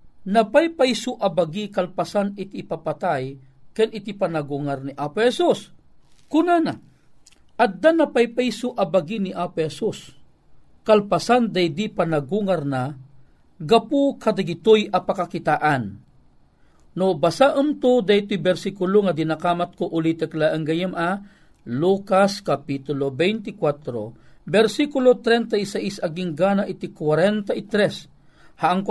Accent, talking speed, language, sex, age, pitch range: native, 90 wpm, Filipino, male, 50-69, 160-215 Hz